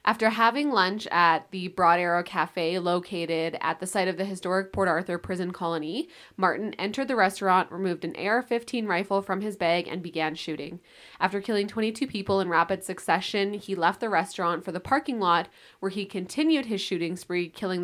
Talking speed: 185 wpm